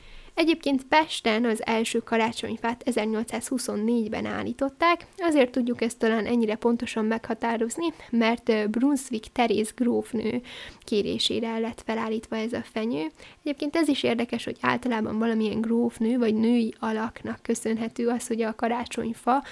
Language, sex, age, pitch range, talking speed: Hungarian, female, 10-29, 225-255 Hz, 125 wpm